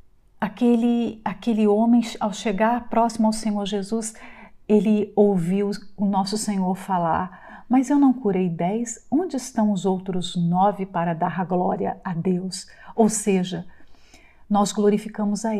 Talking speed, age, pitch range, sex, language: 140 wpm, 50-69, 185-225 Hz, female, Portuguese